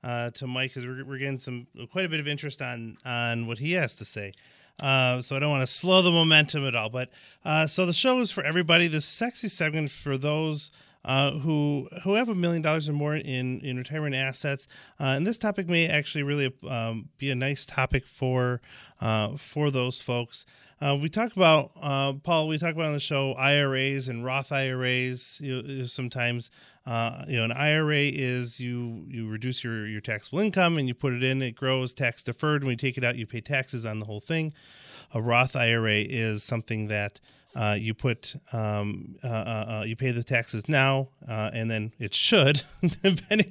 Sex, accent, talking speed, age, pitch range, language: male, American, 205 wpm, 30-49, 120-150 Hz, English